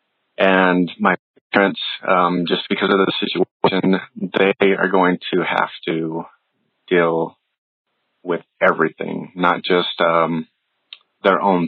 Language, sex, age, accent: English, male, 30-49, American